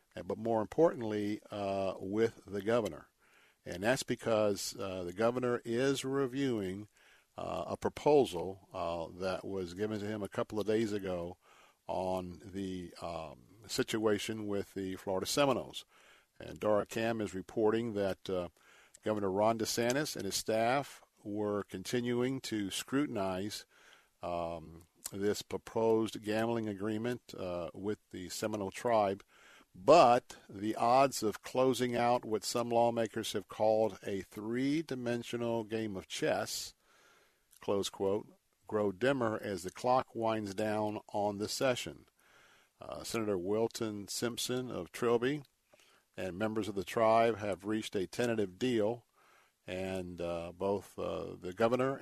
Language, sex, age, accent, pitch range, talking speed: English, male, 50-69, American, 95-115 Hz, 130 wpm